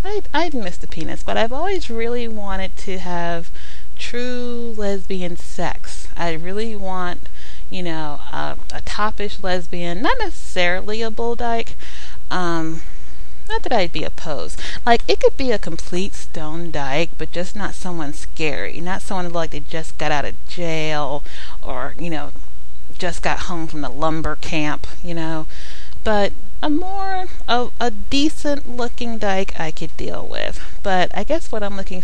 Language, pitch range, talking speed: English, 155-220 Hz, 165 wpm